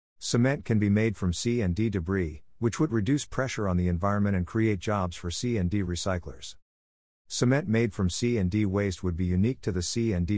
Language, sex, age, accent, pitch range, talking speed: English, male, 50-69, American, 90-110 Hz, 180 wpm